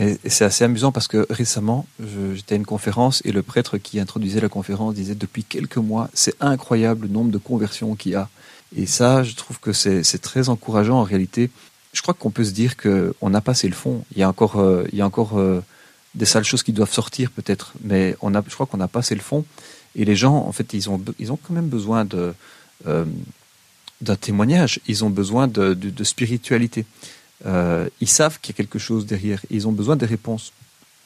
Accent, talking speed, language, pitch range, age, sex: French, 230 wpm, French, 100-120 Hz, 40-59, male